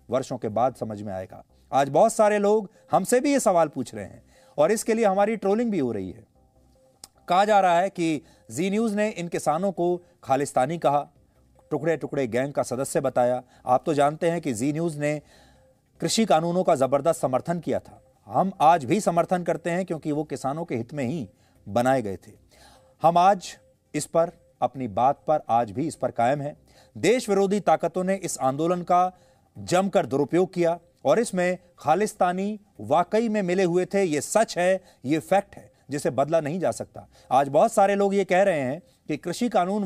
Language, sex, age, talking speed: English, male, 30-49, 170 wpm